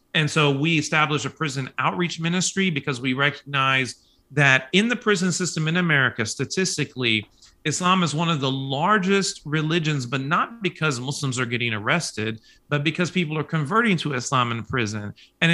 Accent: American